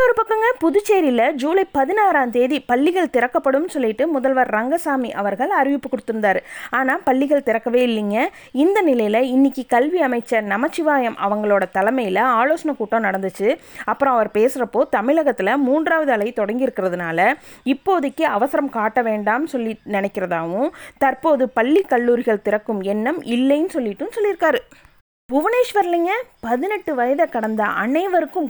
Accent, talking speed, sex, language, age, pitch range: native, 120 wpm, female, Tamil, 20-39, 220-300 Hz